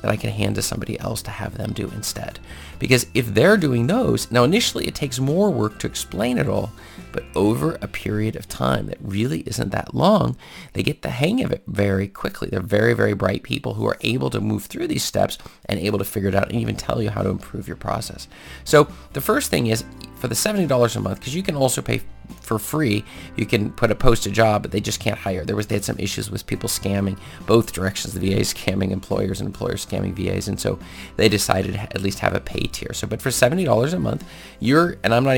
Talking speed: 245 wpm